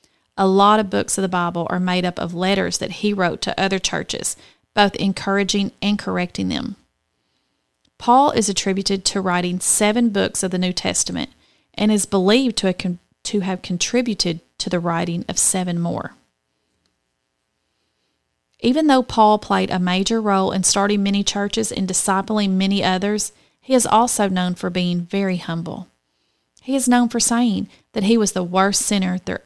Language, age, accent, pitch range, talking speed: English, 30-49, American, 175-210 Hz, 165 wpm